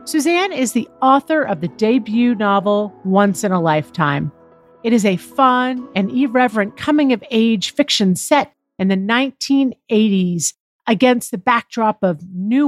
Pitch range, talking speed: 195-280 Hz, 145 wpm